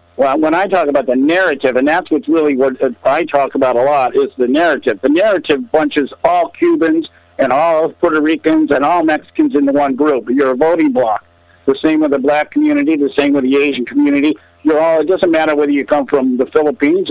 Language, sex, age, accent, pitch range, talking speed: English, male, 50-69, American, 140-175 Hz, 220 wpm